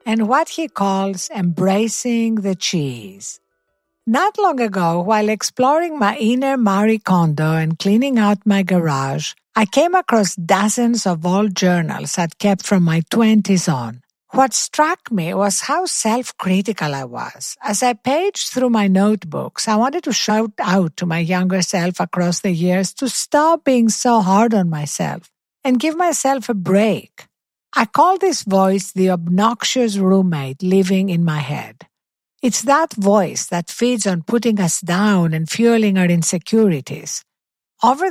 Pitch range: 180-245 Hz